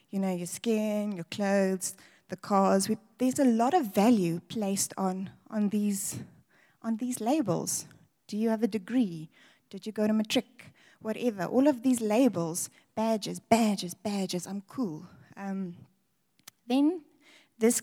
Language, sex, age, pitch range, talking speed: English, female, 20-39, 195-245 Hz, 150 wpm